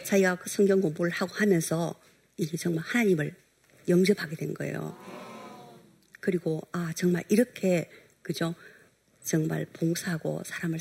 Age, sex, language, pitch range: 50-69, female, Korean, 165-195 Hz